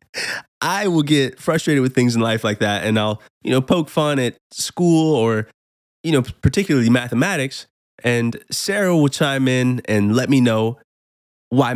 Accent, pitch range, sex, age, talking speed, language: American, 100-135 Hz, male, 20-39, 170 wpm, English